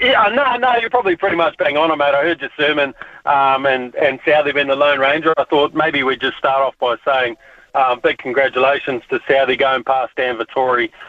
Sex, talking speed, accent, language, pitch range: male, 215 wpm, Australian, English, 130-155 Hz